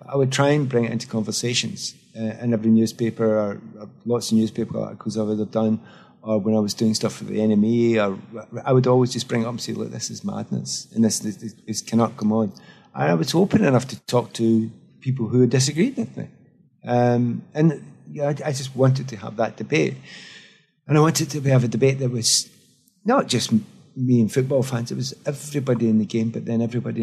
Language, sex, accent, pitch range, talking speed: English, male, British, 110-135 Hz, 220 wpm